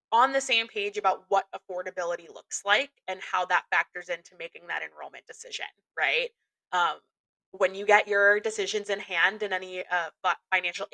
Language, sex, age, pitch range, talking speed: English, female, 20-39, 185-225 Hz, 170 wpm